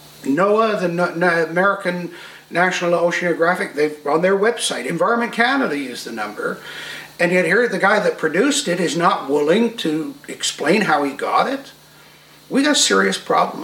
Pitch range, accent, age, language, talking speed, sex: 160-235 Hz, American, 60-79, English, 165 wpm, male